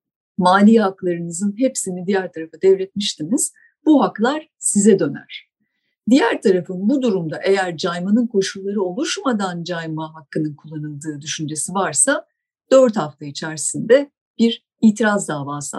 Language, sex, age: Turkish, female, 50-69